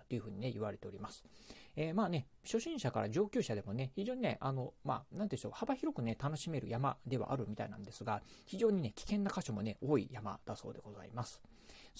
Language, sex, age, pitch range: Japanese, male, 40-59, 115-150 Hz